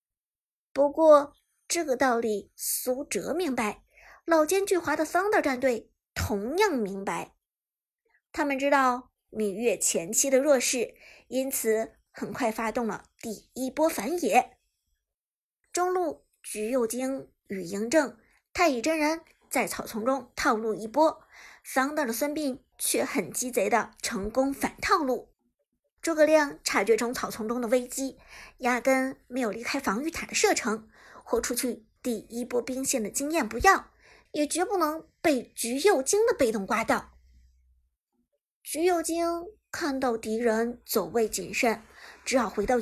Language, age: Chinese, 50-69